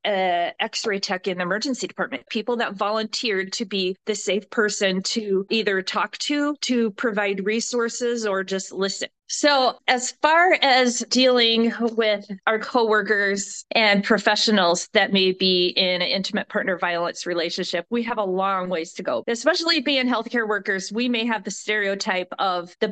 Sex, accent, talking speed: female, American, 160 wpm